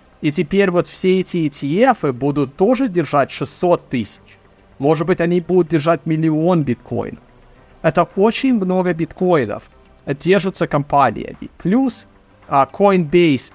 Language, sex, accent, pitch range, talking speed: Russian, male, native, 130-180 Hz, 115 wpm